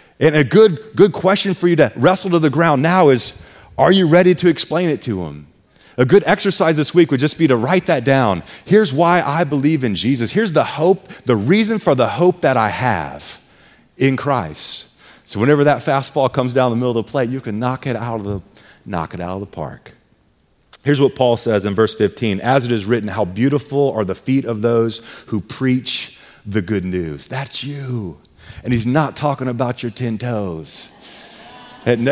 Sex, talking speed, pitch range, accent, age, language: male, 205 wpm, 125-195 Hz, American, 30-49, English